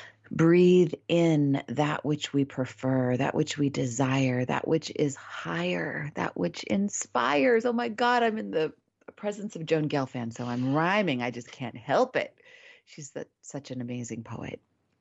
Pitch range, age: 130-160 Hz, 30-49